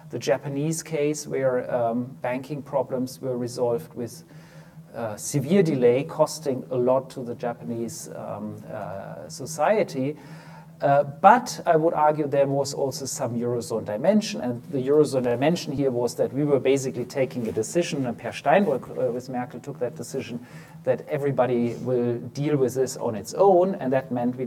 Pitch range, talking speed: 120-155 Hz, 165 wpm